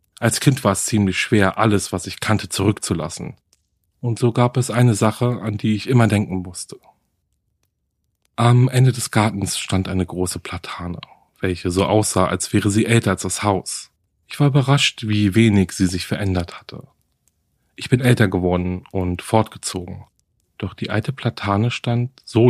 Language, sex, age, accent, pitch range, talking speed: German, male, 40-59, German, 90-115 Hz, 165 wpm